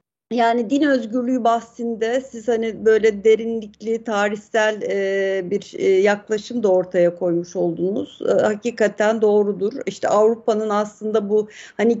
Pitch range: 210-260 Hz